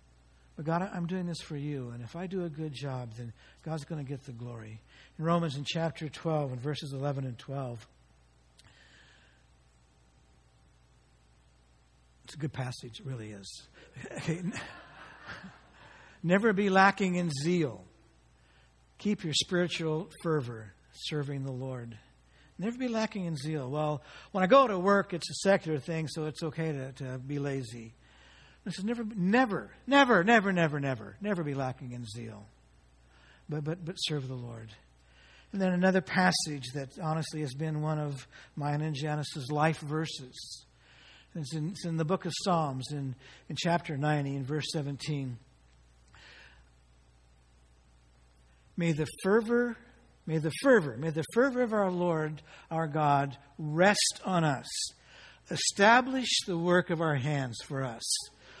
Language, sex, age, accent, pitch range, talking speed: English, male, 60-79, American, 110-170 Hz, 150 wpm